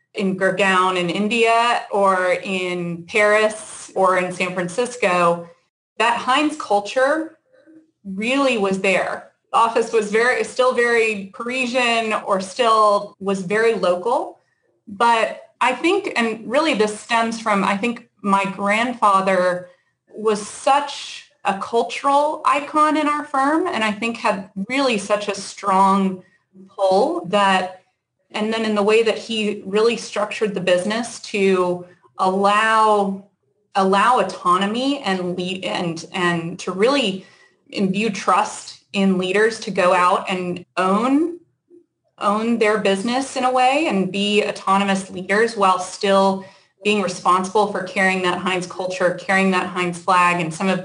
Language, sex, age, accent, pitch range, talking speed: English, female, 20-39, American, 185-230 Hz, 135 wpm